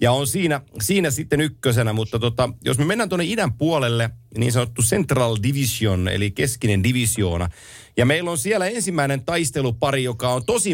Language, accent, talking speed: Finnish, native, 170 wpm